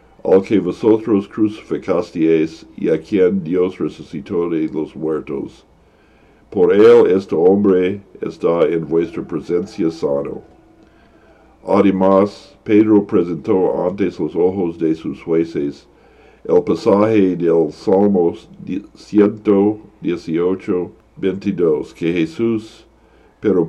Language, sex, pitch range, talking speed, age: Spanish, male, 85-105 Hz, 100 wpm, 50-69